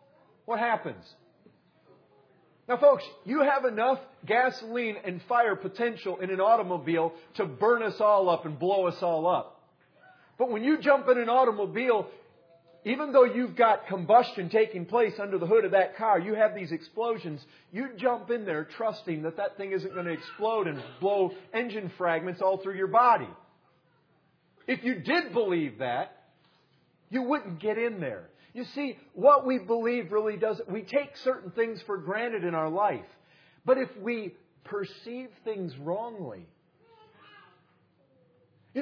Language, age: English, 40-59